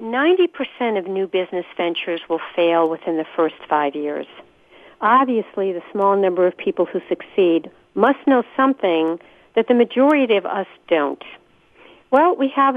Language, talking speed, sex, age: English, 155 wpm, female, 50-69